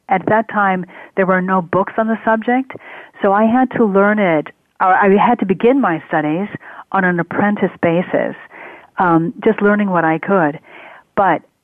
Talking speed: 175 wpm